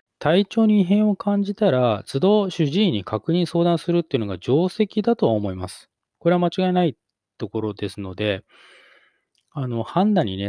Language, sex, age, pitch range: Japanese, male, 20-39, 110-180 Hz